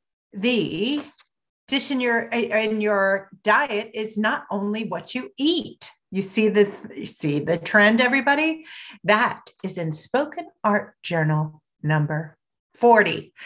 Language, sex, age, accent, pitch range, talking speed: English, female, 40-59, American, 170-265 Hz, 130 wpm